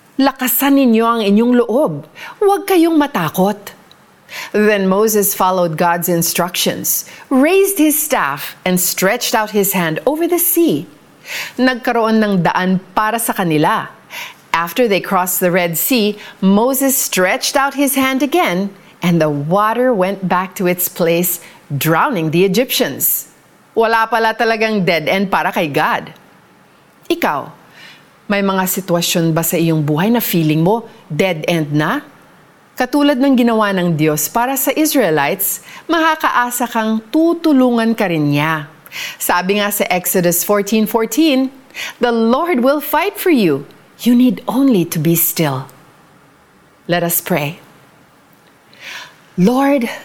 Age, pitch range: 40-59, 175-255 Hz